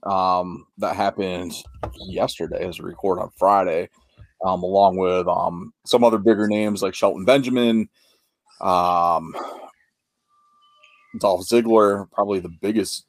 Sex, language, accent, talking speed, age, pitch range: male, English, American, 120 wpm, 30-49, 90-115 Hz